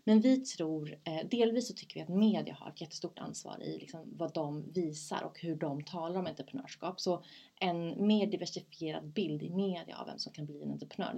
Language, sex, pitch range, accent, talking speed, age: English, female, 165-225 Hz, Swedish, 205 wpm, 30-49